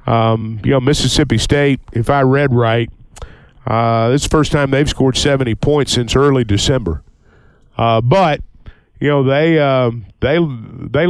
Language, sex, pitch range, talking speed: English, male, 120-155 Hz, 155 wpm